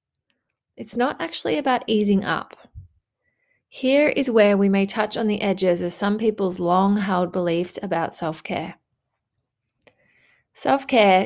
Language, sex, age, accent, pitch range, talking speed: English, female, 20-39, Australian, 185-225 Hz, 125 wpm